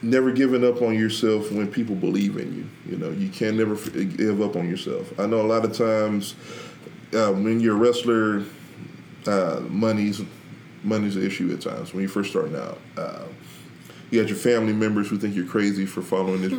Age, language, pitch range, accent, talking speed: 20-39, English, 100-115 Hz, American, 200 wpm